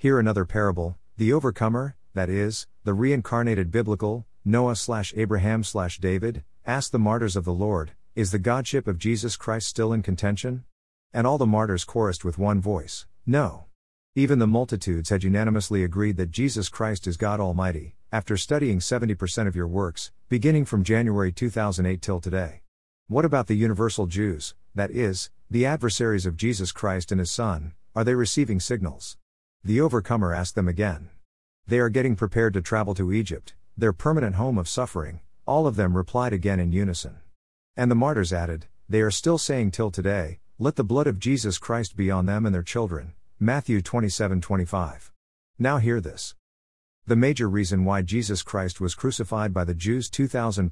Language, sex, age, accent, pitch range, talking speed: English, male, 50-69, American, 90-115 Hz, 175 wpm